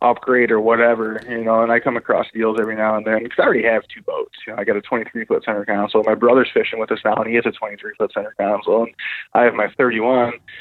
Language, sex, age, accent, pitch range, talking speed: English, male, 20-39, American, 110-125 Hz, 265 wpm